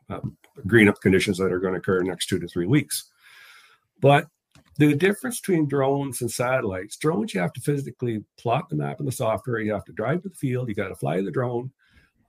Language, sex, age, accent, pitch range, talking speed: English, male, 50-69, American, 110-140 Hz, 230 wpm